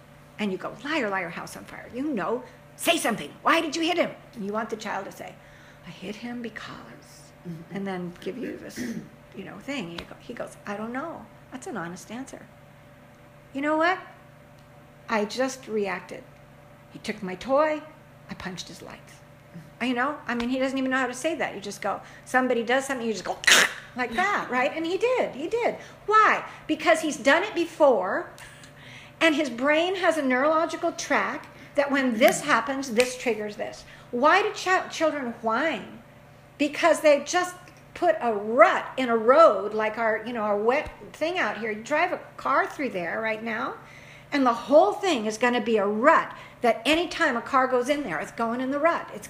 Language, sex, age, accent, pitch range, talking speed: English, female, 60-79, American, 215-310 Hz, 200 wpm